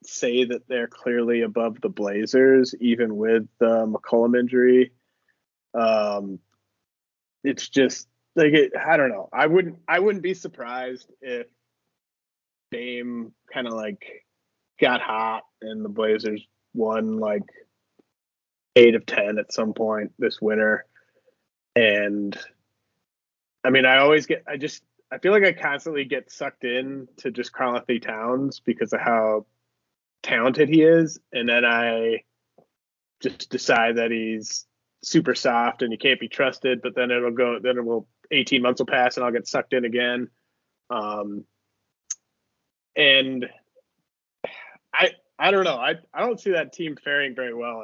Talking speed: 150 wpm